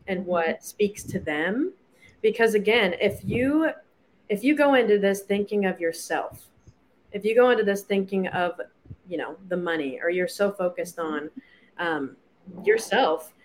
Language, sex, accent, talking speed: English, female, American, 155 wpm